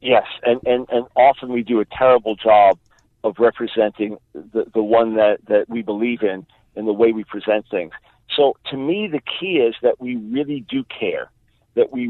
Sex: male